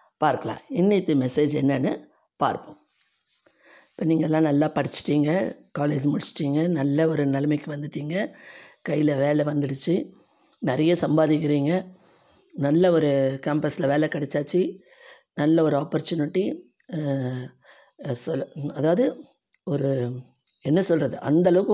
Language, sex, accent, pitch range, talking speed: Tamil, female, native, 145-175 Hz, 95 wpm